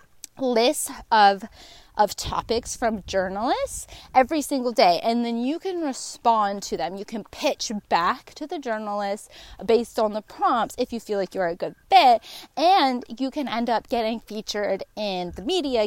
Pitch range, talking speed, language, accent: 195-260 Hz, 170 wpm, English, American